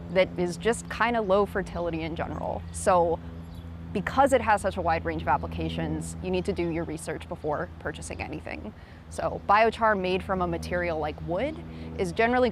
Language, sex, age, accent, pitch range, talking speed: English, female, 20-39, American, 165-195 Hz, 180 wpm